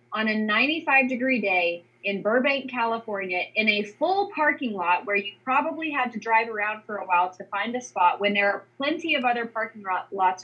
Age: 30-49